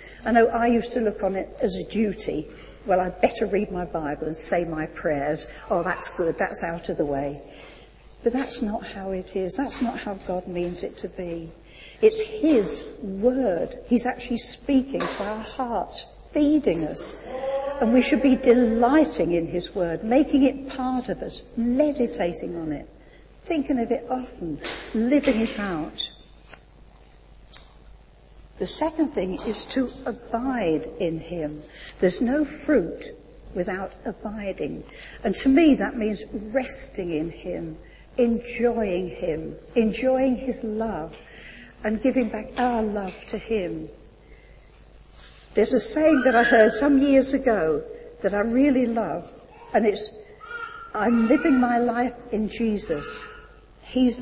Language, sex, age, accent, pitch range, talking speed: English, female, 60-79, British, 185-255 Hz, 145 wpm